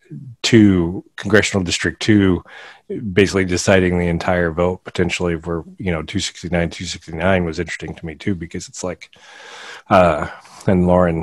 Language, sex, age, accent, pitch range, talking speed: English, male, 40-59, American, 85-95 Hz, 140 wpm